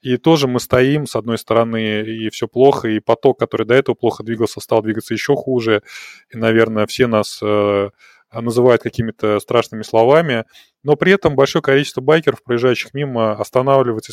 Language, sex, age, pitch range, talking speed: Russian, male, 20-39, 115-150 Hz, 165 wpm